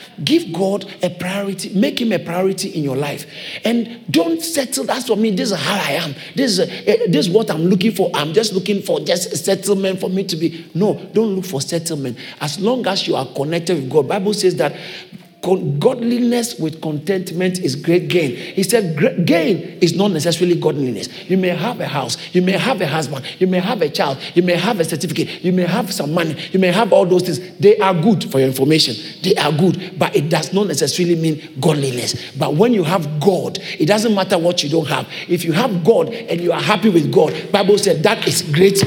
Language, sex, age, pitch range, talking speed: English, male, 50-69, 170-215 Hz, 225 wpm